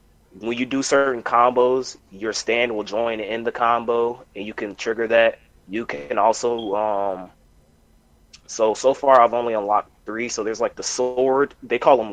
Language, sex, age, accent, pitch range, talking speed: English, male, 20-39, American, 100-125 Hz, 180 wpm